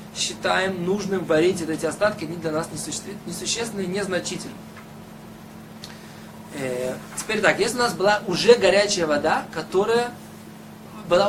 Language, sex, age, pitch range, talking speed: Russian, male, 20-39, 160-205 Hz, 130 wpm